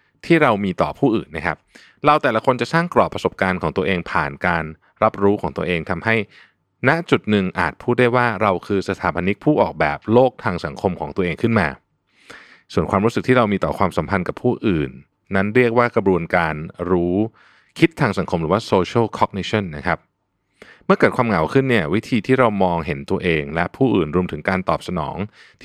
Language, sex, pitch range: Thai, male, 85-115 Hz